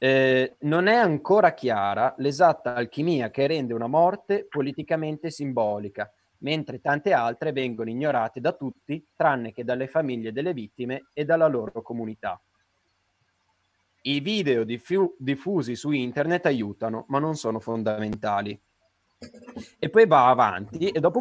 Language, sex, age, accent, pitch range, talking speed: Italian, male, 30-49, native, 115-150 Hz, 135 wpm